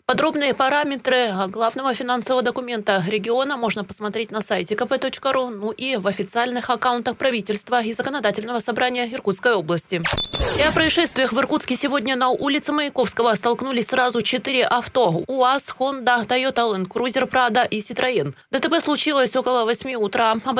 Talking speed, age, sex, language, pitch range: 145 wpm, 20-39, female, Russian, 230-270 Hz